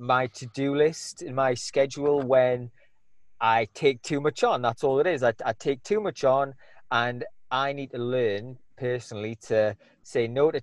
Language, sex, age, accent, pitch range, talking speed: English, male, 30-49, British, 120-145 Hz, 180 wpm